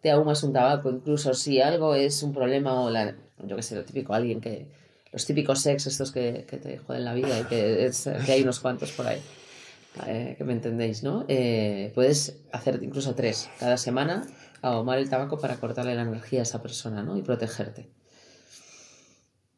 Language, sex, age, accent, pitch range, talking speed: Spanish, female, 30-49, Spanish, 125-150 Hz, 185 wpm